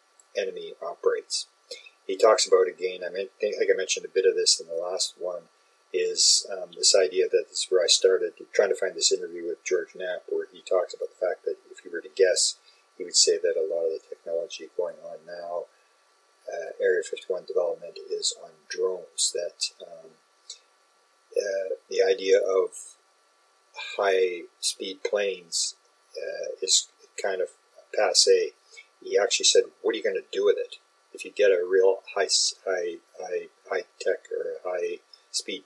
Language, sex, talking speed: English, male, 170 wpm